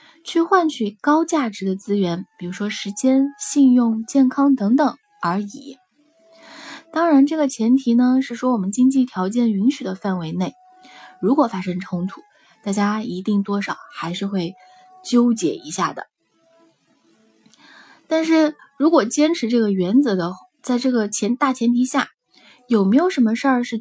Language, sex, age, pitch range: Chinese, female, 20-39, 205-300 Hz